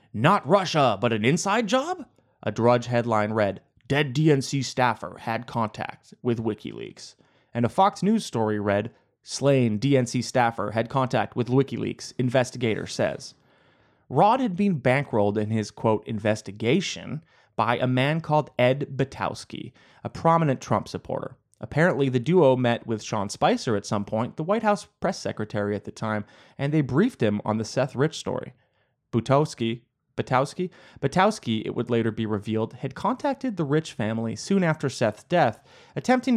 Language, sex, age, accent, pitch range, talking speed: English, male, 30-49, American, 110-150 Hz, 155 wpm